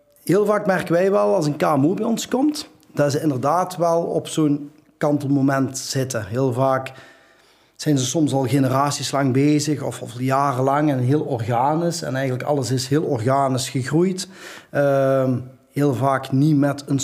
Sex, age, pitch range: male, 30-49, 135-165 Hz